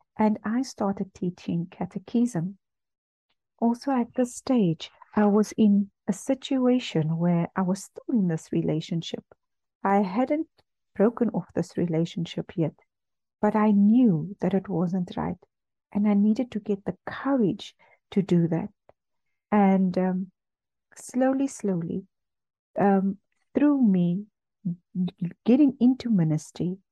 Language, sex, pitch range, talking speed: English, female, 175-225 Hz, 125 wpm